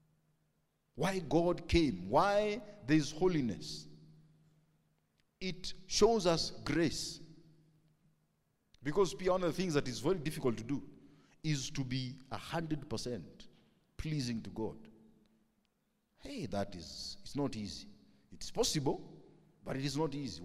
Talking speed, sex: 125 wpm, male